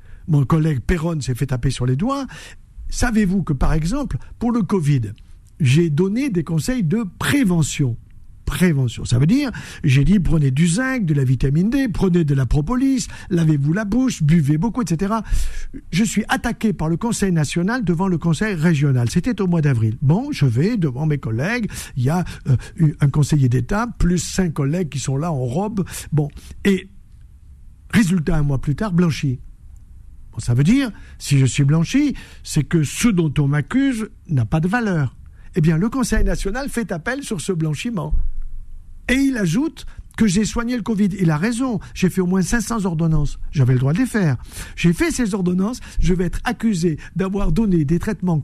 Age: 50-69